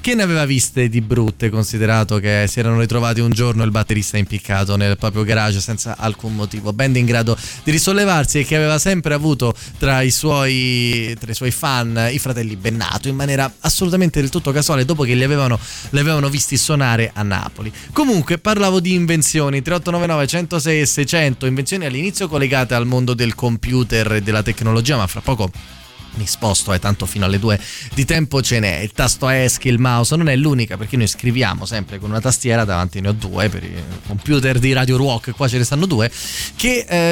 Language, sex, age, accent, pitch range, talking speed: Italian, male, 20-39, native, 110-145 Hz, 190 wpm